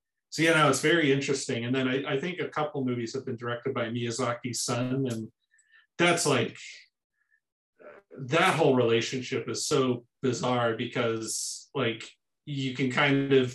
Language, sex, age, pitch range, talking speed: English, male, 30-49, 125-155 Hz, 155 wpm